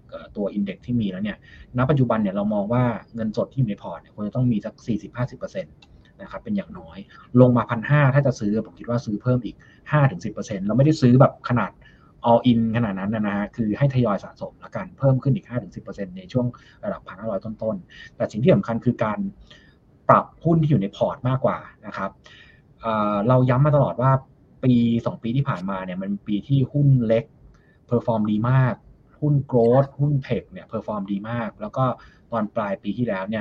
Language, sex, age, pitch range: Thai, male, 20-39, 105-135 Hz